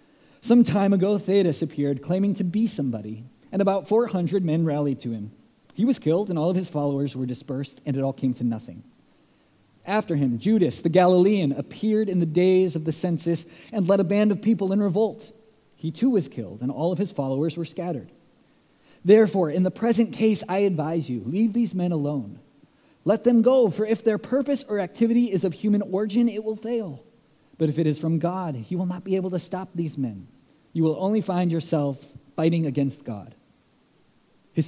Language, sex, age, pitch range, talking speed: English, male, 30-49, 140-195 Hz, 200 wpm